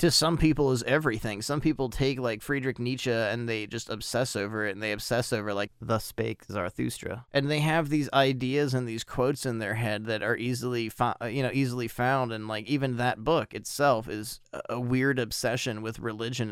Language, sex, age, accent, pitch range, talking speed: English, male, 30-49, American, 110-140 Hz, 205 wpm